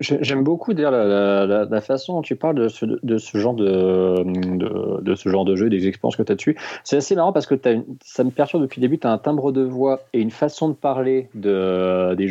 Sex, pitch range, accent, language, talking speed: male, 95-130 Hz, French, French, 265 wpm